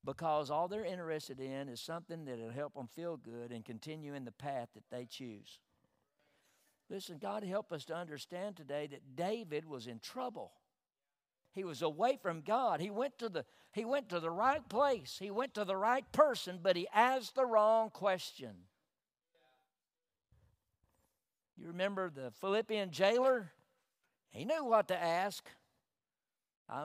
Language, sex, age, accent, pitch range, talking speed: English, male, 60-79, American, 165-250 Hz, 150 wpm